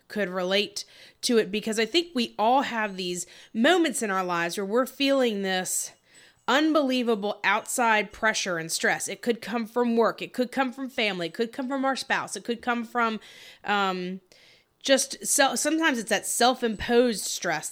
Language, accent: English, American